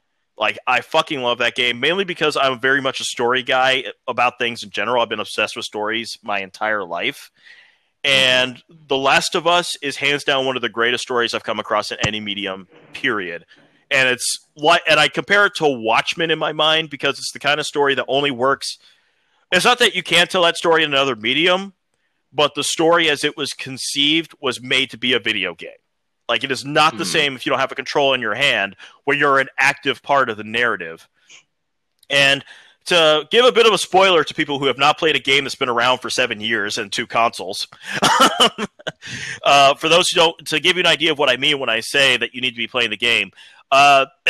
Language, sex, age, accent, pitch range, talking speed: English, male, 30-49, American, 125-160 Hz, 220 wpm